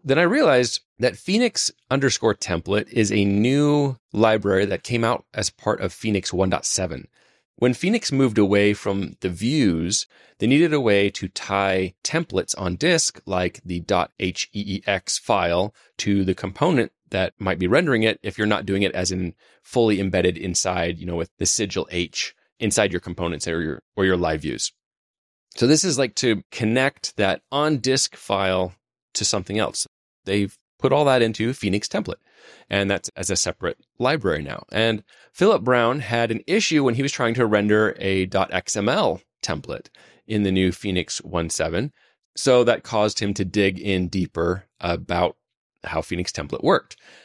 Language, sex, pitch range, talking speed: English, male, 95-125 Hz, 170 wpm